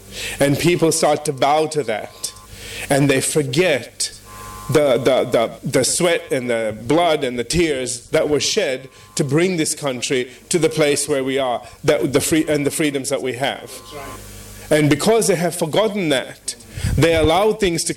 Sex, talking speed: male, 175 wpm